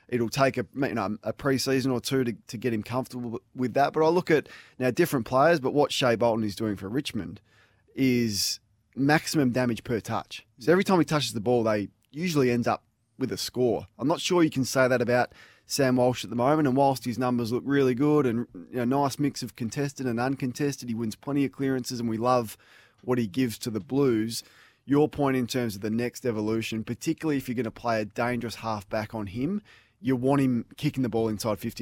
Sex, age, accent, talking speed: male, 20-39, Australian, 230 wpm